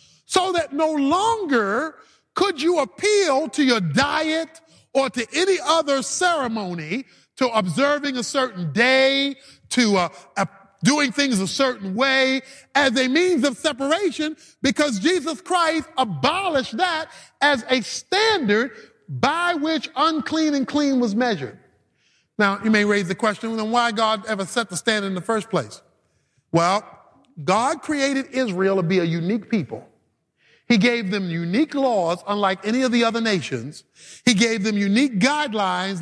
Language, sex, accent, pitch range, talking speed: English, male, American, 220-305 Hz, 150 wpm